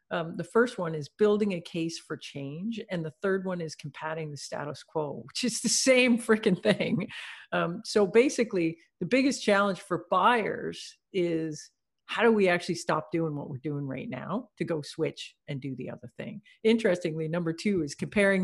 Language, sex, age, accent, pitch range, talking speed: English, female, 50-69, American, 165-220 Hz, 190 wpm